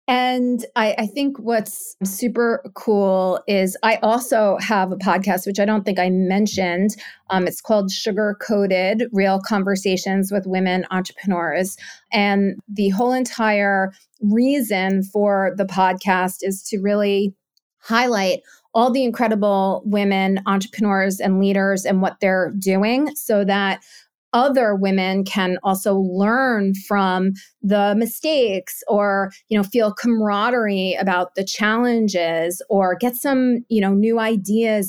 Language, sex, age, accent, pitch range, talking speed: English, female, 30-49, American, 190-225 Hz, 130 wpm